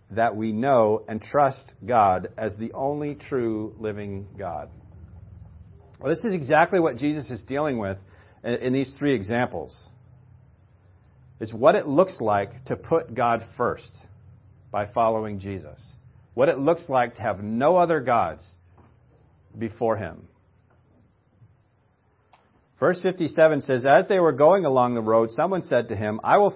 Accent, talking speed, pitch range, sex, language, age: American, 145 wpm, 105-135 Hz, male, English, 40-59